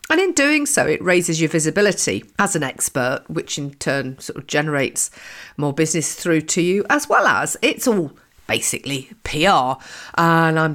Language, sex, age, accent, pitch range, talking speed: English, female, 50-69, British, 150-195 Hz, 175 wpm